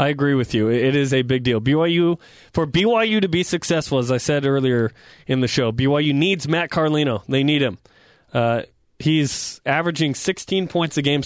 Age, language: 20-39, English